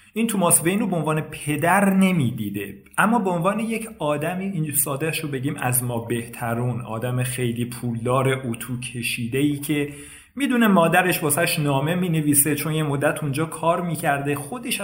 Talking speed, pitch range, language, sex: 160 wpm, 135-175 Hz, Persian, male